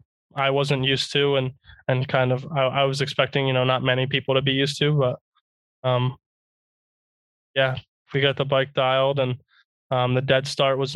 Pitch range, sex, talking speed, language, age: 125-140 Hz, male, 190 wpm, English, 20-39